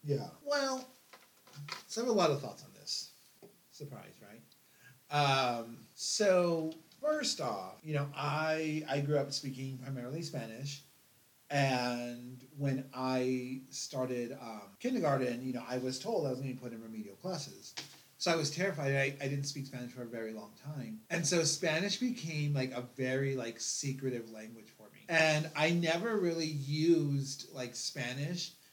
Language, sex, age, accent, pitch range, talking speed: English, male, 30-49, American, 130-165 Hz, 165 wpm